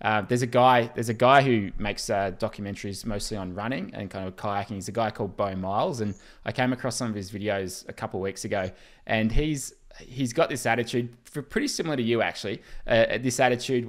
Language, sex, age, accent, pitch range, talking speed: English, male, 20-39, Australian, 105-120 Hz, 225 wpm